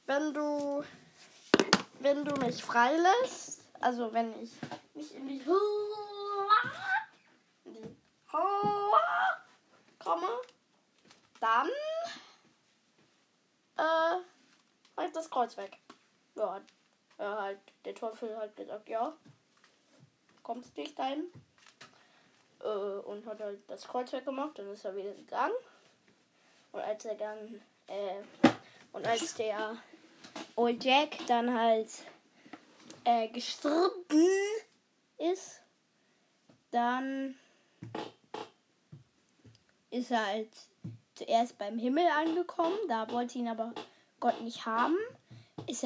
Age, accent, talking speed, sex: 10-29, German, 100 wpm, female